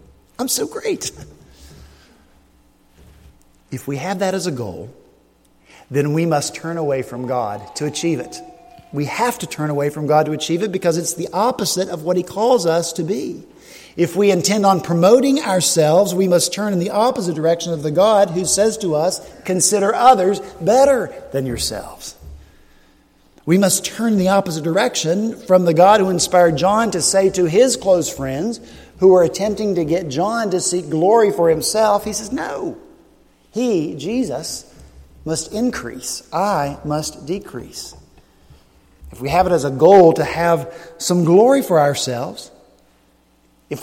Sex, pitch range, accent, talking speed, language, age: male, 145-200 Hz, American, 165 wpm, English, 50-69